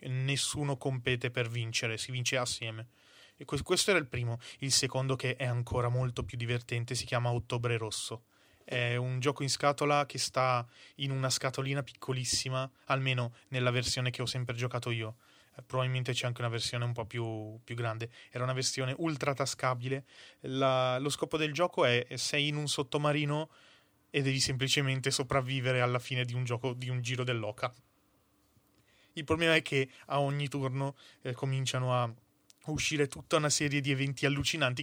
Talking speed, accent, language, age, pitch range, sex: 165 wpm, native, Italian, 20-39, 120-140 Hz, male